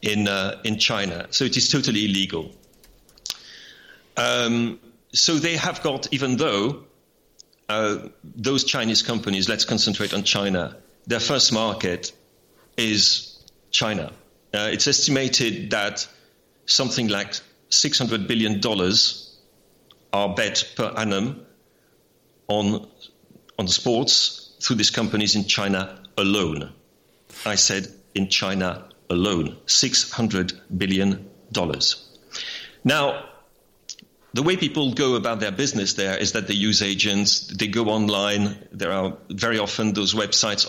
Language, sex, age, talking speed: English, male, 40-59, 120 wpm